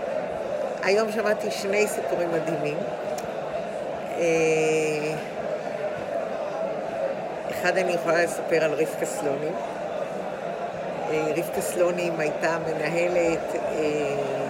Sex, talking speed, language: female, 65 wpm, English